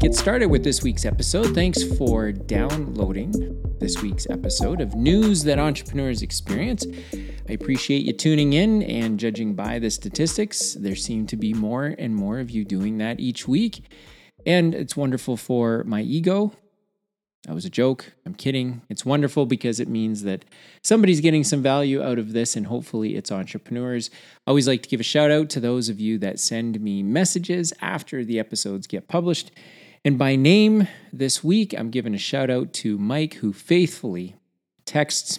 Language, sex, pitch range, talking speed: English, male, 105-150 Hz, 175 wpm